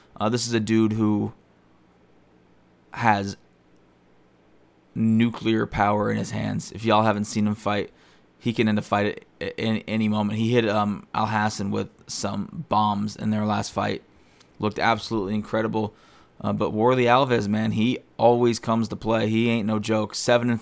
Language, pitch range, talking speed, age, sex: English, 105-115 Hz, 170 wpm, 20-39, male